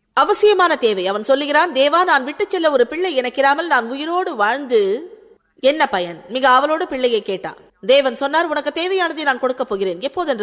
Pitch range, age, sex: 235-335 Hz, 20-39, female